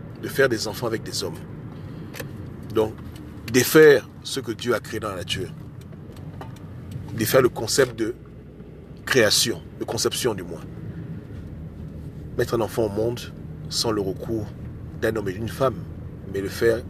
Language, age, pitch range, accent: French, 40-59, 95-125 Hz, French